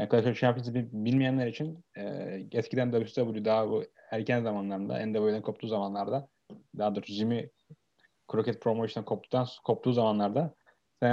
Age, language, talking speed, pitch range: 30-49, Turkish, 125 wpm, 110-145 Hz